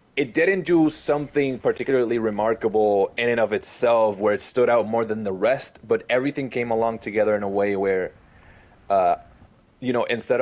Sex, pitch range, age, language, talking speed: male, 105-125 Hz, 20-39, English, 180 wpm